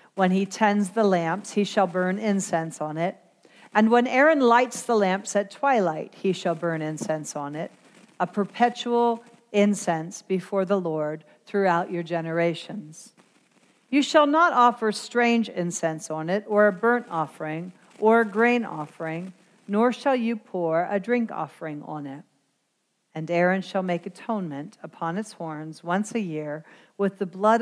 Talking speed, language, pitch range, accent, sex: 160 wpm, English, 165-220 Hz, American, female